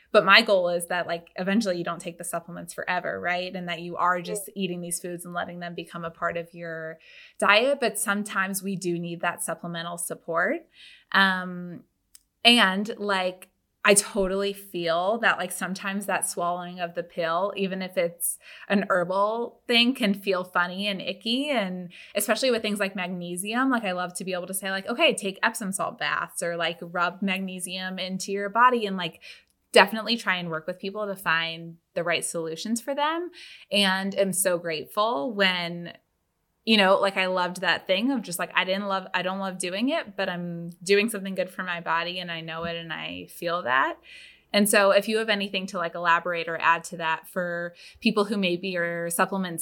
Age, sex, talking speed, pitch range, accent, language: 20-39, female, 200 wpm, 175-205 Hz, American, English